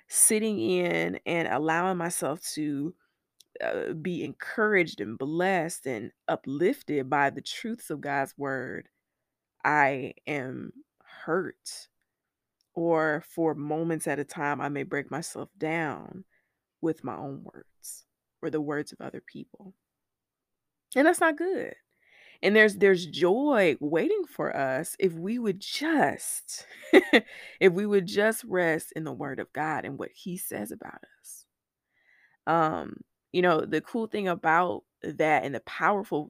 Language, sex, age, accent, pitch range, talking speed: English, female, 20-39, American, 155-215 Hz, 140 wpm